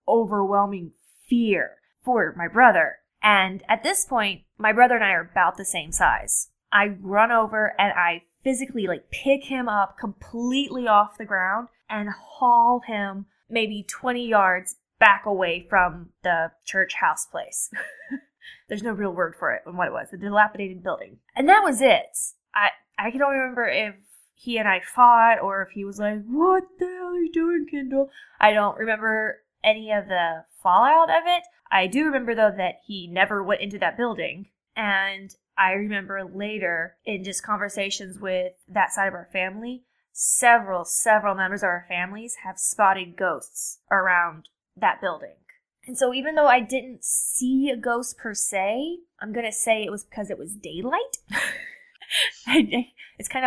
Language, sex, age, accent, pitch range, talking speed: English, female, 10-29, American, 195-255 Hz, 170 wpm